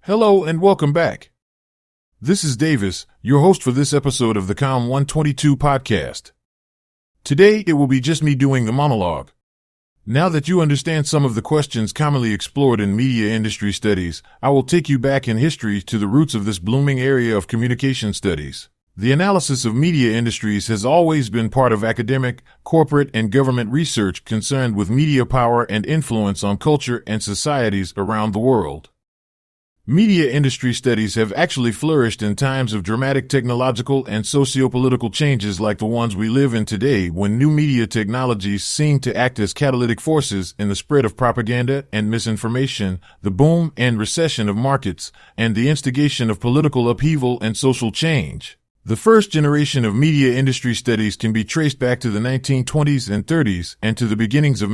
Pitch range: 110-140 Hz